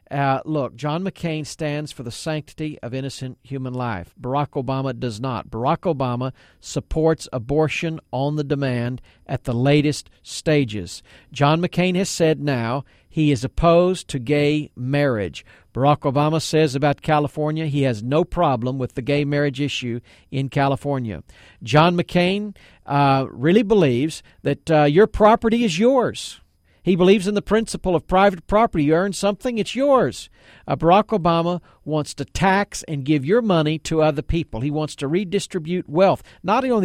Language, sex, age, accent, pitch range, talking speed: English, male, 50-69, American, 135-175 Hz, 160 wpm